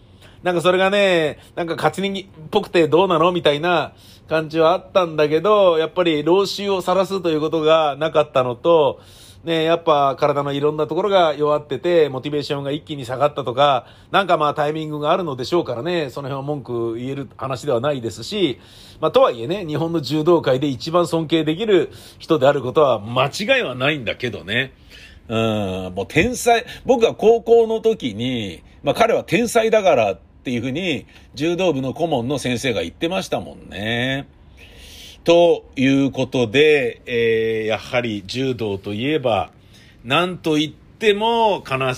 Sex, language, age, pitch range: male, Japanese, 40-59, 115-170 Hz